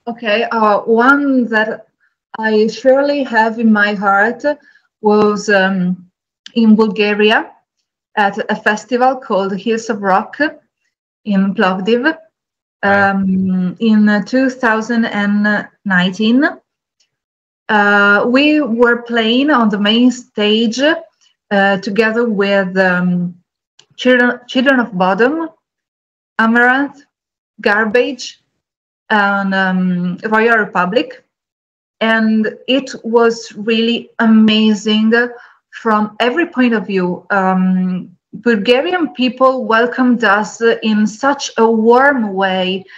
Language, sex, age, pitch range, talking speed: English, female, 20-39, 200-245 Hz, 95 wpm